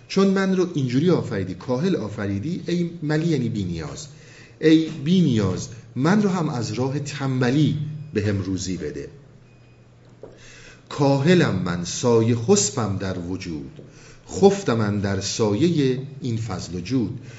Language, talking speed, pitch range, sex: Persian, 130 wpm, 105-145 Hz, male